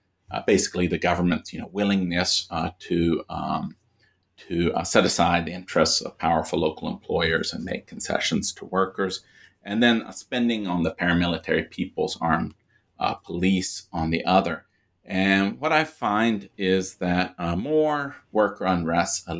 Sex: male